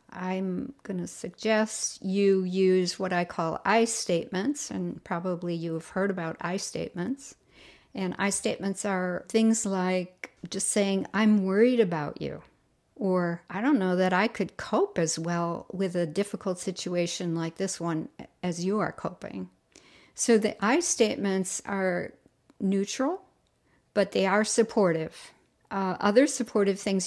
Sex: female